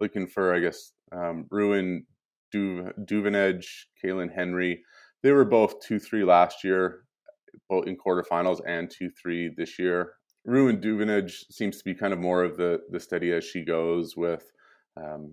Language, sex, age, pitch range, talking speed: English, male, 20-39, 85-100 Hz, 160 wpm